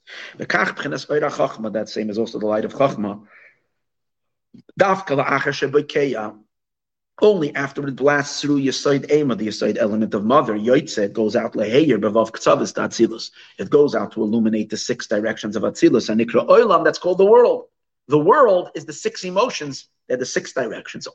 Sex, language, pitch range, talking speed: male, English, 110-150 Hz, 140 wpm